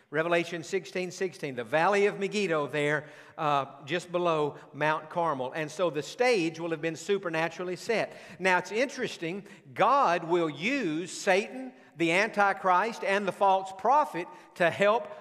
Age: 50-69